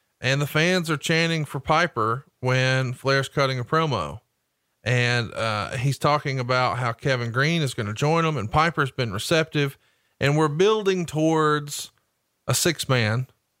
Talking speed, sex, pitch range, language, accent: 165 wpm, male, 120-150 Hz, English, American